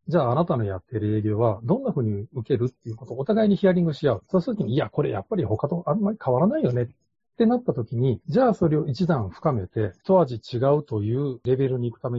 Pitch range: 115-170 Hz